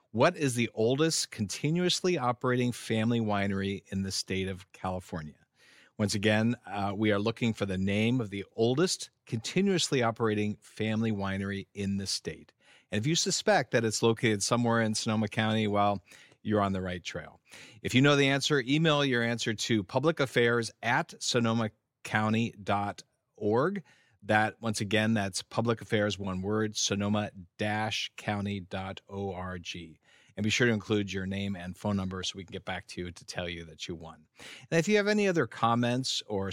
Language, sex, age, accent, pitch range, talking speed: English, male, 40-59, American, 100-125 Hz, 165 wpm